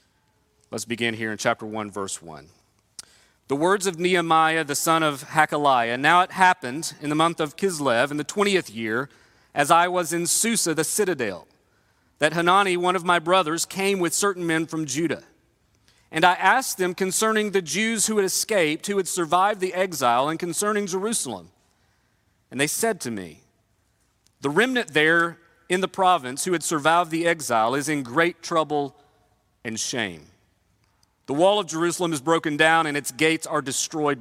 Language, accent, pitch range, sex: English, American, 140-185 Hz, male